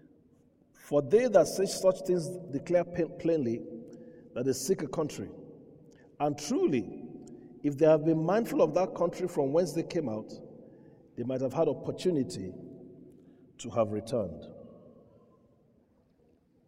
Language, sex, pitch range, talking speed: English, male, 130-155 Hz, 130 wpm